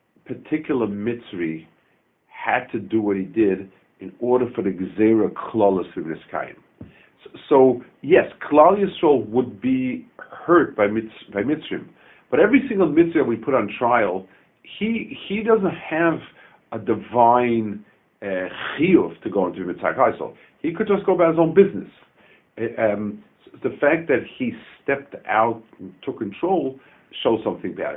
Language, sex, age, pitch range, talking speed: English, male, 50-69, 110-165 Hz, 145 wpm